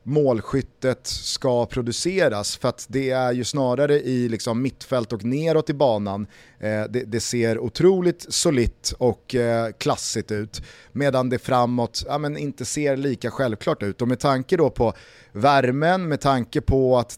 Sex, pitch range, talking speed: male, 115-145 Hz, 160 wpm